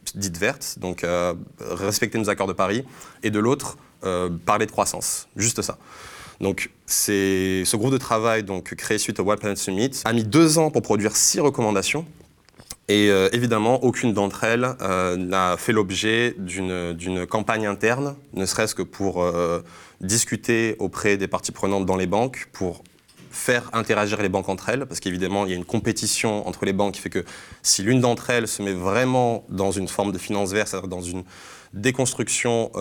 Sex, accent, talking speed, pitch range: male, French, 185 wpm, 95-115 Hz